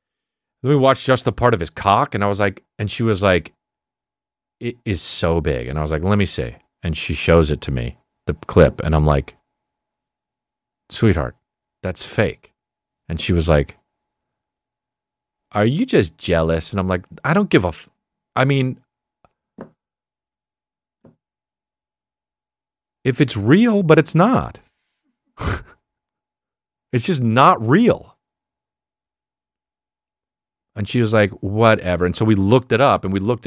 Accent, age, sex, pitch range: American, 40-59, male, 85-135 Hz